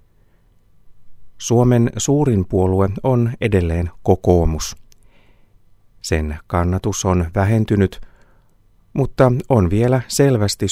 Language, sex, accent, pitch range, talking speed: Finnish, male, native, 90-105 Hz, 80 wpm